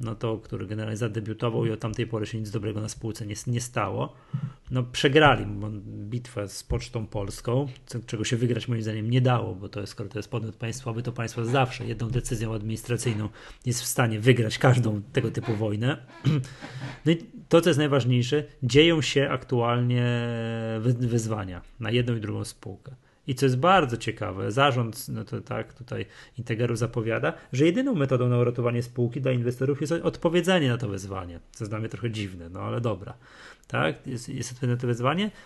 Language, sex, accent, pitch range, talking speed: Polish, male, native, 115-140 Hz, 180 wpm